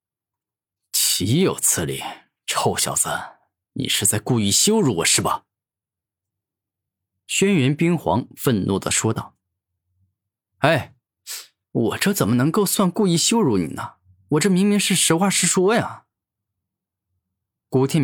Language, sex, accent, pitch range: Chinese, male, native, 100-150 Hz